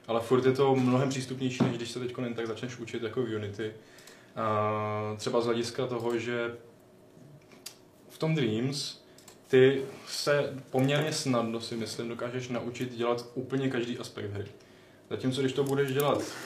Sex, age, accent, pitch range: male, 20-39, native, 110-125 Hz